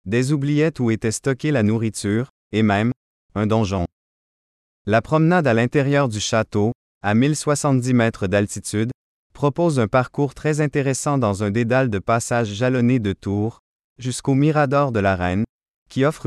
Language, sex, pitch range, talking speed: French, male, 105-140 Hz, 150 wpm